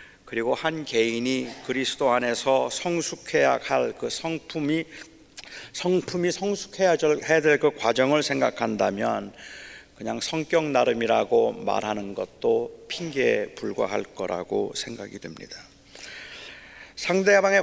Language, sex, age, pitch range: Korean, male, 40-59, 115-150 Hz